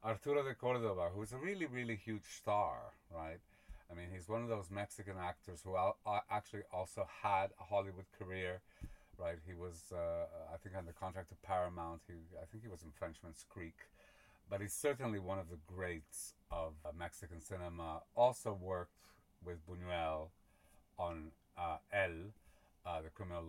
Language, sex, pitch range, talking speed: English, male, 90-115 Hz, 170 wpm